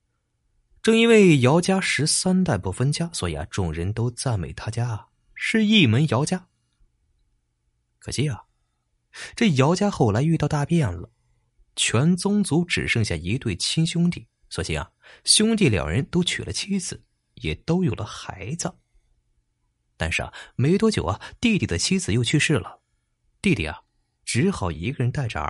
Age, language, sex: 30-49, Chinese, male